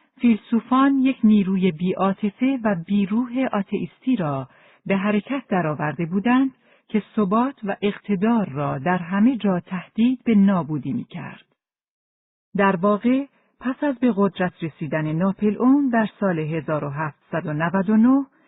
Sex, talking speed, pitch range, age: female, 115 wpm, 175-235 Hz, 50-69